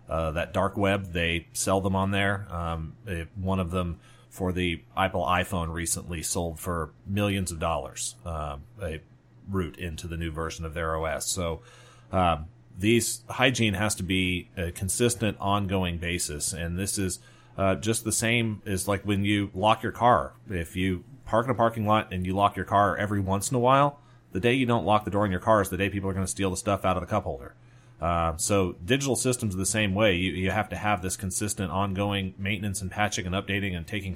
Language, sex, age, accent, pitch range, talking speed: English, male, 30-49, American, 90-110 Hz, 215 wpm